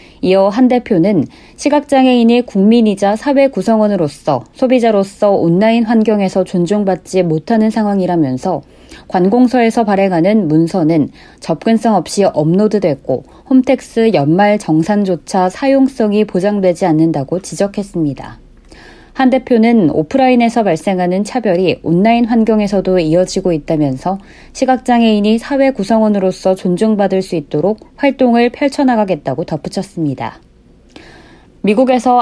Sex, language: female, Korean